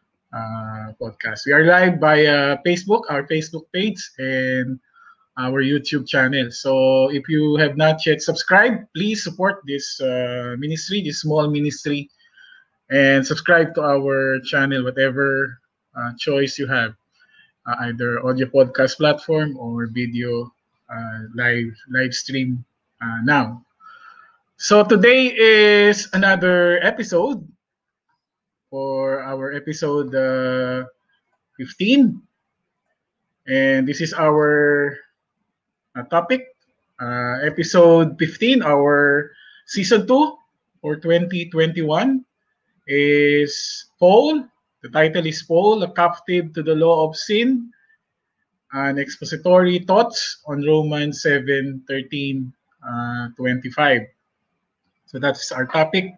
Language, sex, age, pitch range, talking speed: English, male, 20-39, 130-180 Hz, 110 wpm